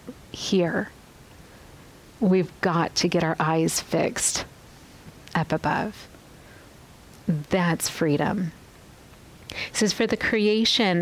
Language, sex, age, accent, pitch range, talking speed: English, female, 40-59, American, 170-200 Hz, 95 wpm